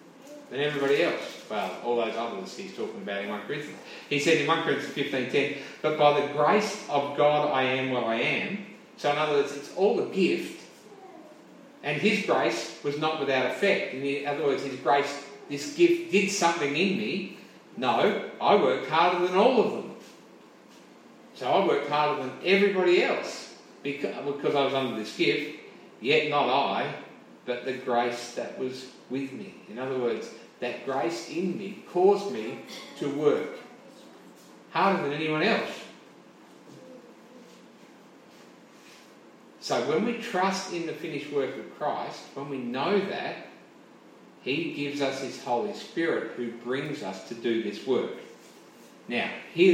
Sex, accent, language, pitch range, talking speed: male, Australian, English, 130-195 Hz, 160 wpm